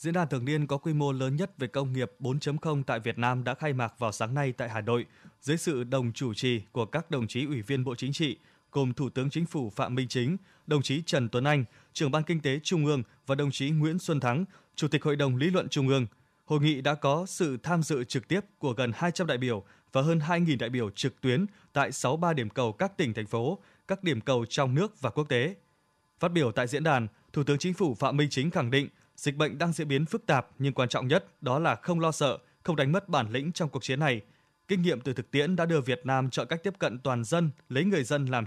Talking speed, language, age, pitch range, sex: 260 wpm, Vietnamese, 20-39, 130-160 Hz, male